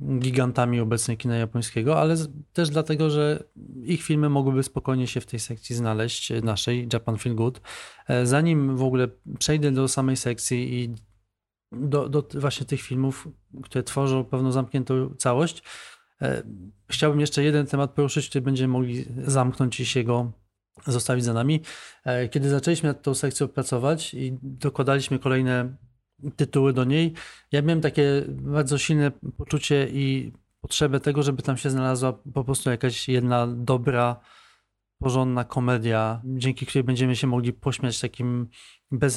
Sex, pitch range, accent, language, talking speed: male, 125-140 Hz, native, Polish, 145 wpm